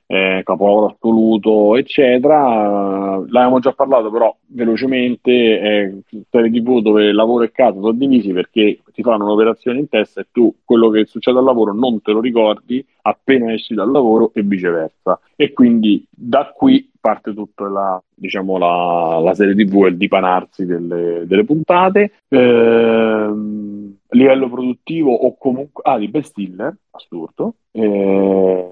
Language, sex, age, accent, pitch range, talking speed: Italian, male, 40-59, native, 95-120 Hz, 140 wpm